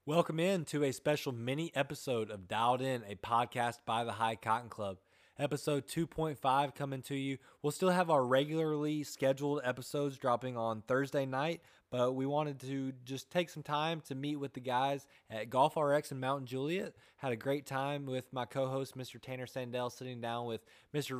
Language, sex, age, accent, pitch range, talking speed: English, male, 20-39, American, 115-140 Hz, 185 wpm